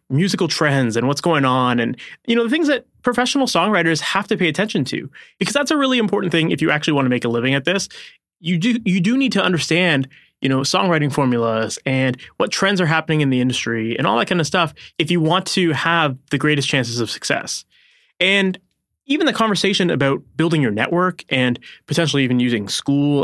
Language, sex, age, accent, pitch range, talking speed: English, male, 20-39, American, 130-180 Hz, 215 wpm